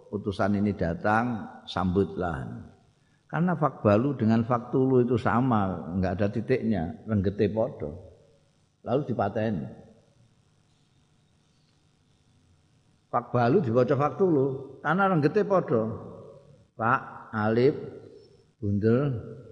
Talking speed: 80 wpm